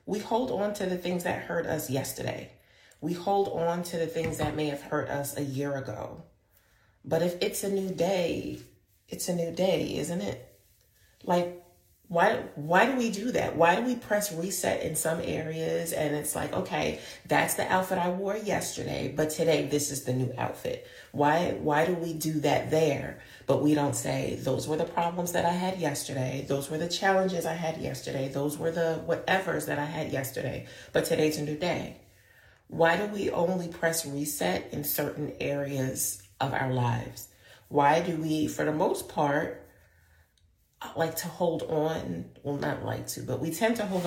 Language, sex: English, female